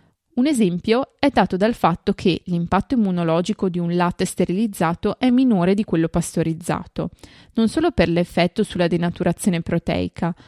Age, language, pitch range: 20-39, Italian, 170-225 Hz